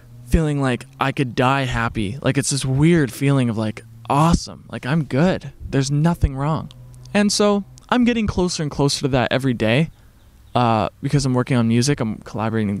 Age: 20-39